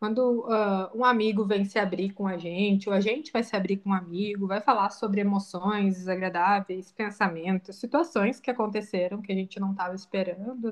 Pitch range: 195-230 Hz